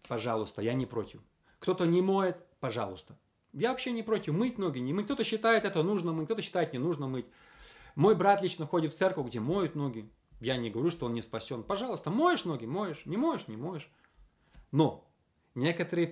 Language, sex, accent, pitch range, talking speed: Russian, male, native, 135-200 Hz, 195 wpm